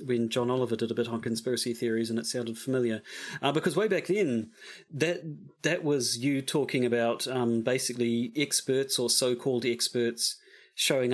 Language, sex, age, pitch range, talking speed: English, male, 40-59, 120-140 Hz, 165 wpm